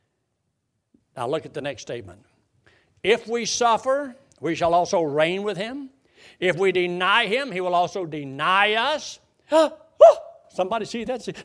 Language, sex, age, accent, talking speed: English, male, 60-79, American, 150 wpm